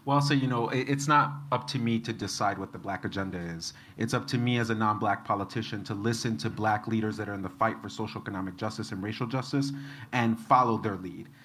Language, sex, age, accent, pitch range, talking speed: English, male, 30-49, American, 110-135 Hz, 235 wpm